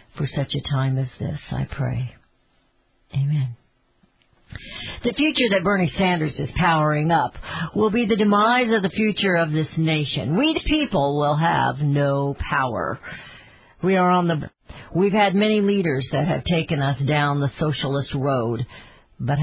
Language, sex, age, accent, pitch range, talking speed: English, female, 60-79, American, 140-200 Hz, 160 wpm